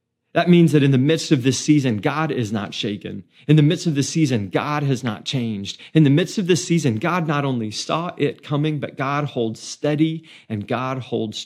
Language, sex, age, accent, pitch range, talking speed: English, male, 40-59, American, 105-140 Hz, 220 wpm